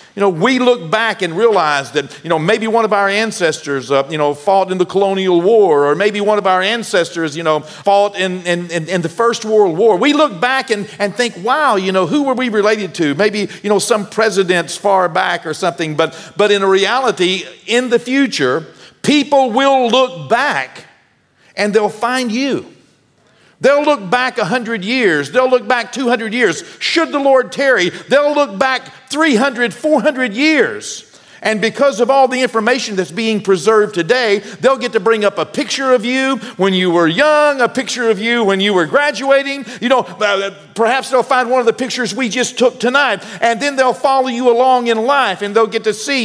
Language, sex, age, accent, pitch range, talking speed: English, male, 50-69, American, 195-255 Hz, 205 wpm